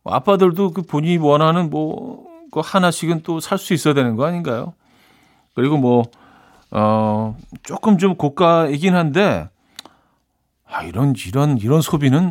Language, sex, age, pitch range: Korean, male, 40-59, 120-165 Hz